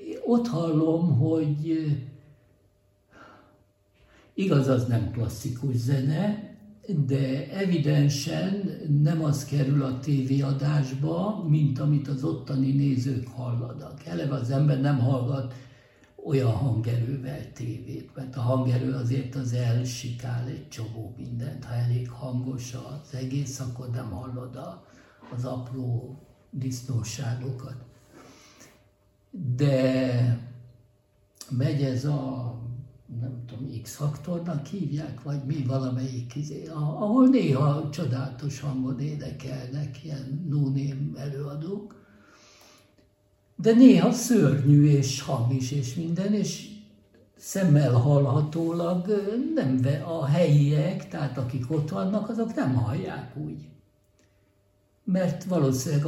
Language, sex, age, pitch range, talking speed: Hungarian, male, 60-79, 125-150 Hz, 100 wpm